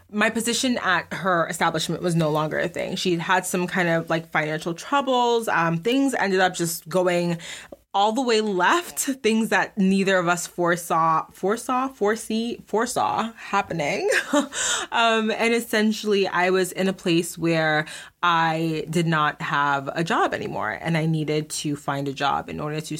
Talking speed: 170 wpm